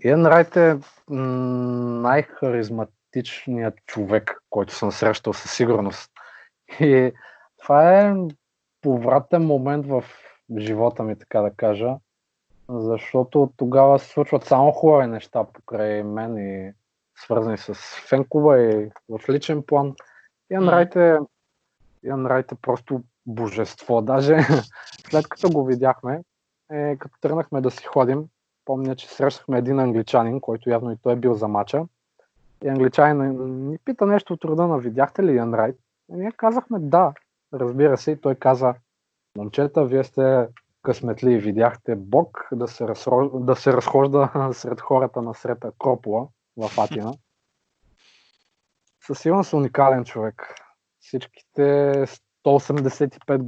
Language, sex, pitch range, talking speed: Bulgarian, male, 115-145 Hz, 120 wpm